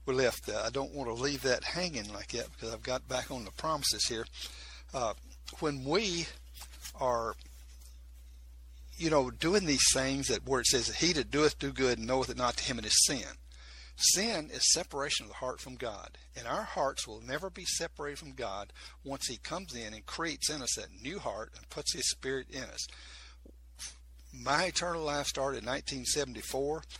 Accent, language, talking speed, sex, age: American, English, 190 wpm, male, 60-79